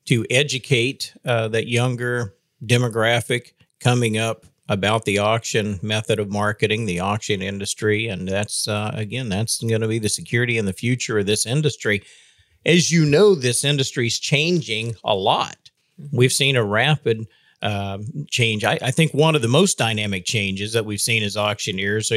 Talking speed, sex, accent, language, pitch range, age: 170 wpm, male, American, English, 110-140 Hz, 50-69